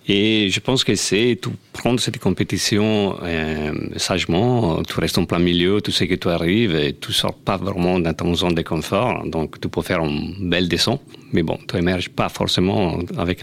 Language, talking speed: French, 205 wpm